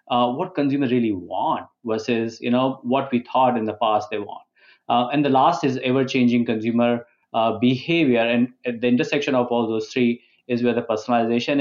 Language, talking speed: English, 190 wpm